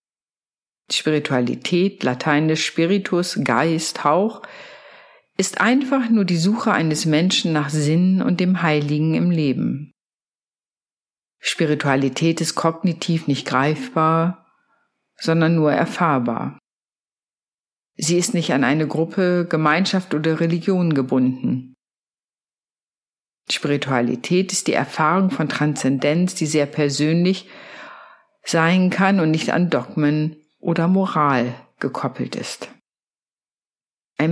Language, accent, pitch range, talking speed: German, German, 155-195 Hz, 100 wpm